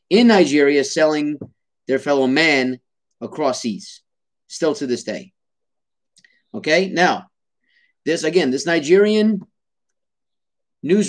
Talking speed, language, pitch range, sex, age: 105 wpm, English, 130-190 Hz, male, 30-49